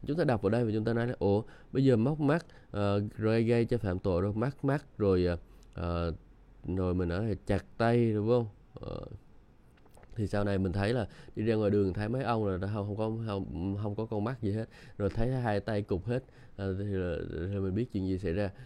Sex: male